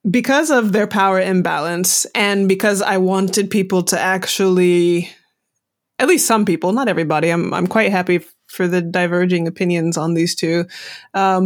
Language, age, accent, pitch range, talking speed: English, 20-39, American, 185-230 Hz, 160 wpm